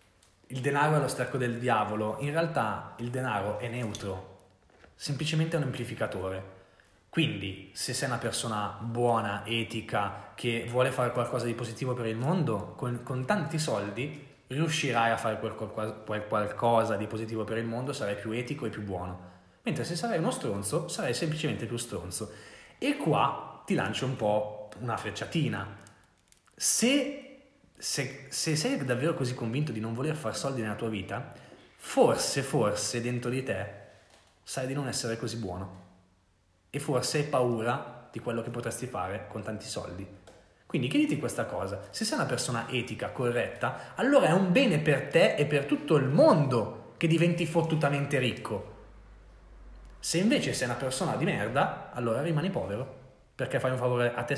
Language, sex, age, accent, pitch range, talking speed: Italian, male, 20-39, native, 105-135 Hz, 165 wpm